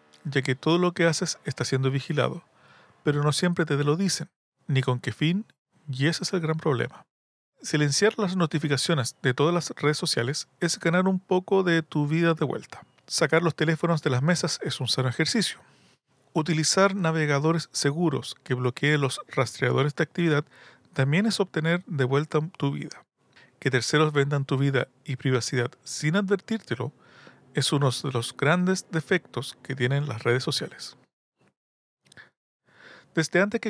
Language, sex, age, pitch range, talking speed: Spanish, male, 40-59, 135-170 Hz, 160 wpm